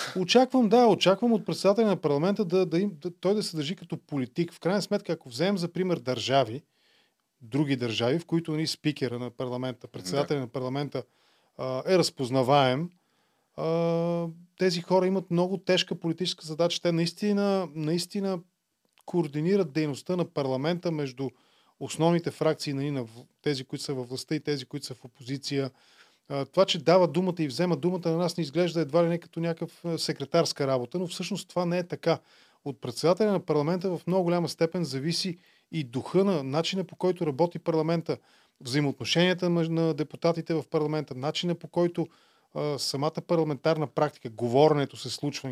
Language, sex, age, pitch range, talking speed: Bulgarian, male, 20-39, 140-175 Hz, 165 wpm